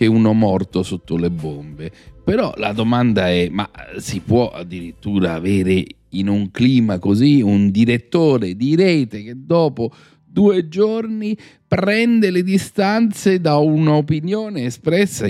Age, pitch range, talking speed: 40-59, 95-140 Hz, 125 wpm